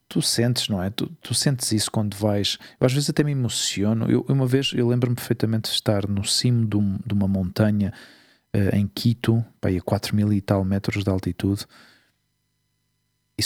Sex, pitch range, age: male, 100-120 Hz, 40-59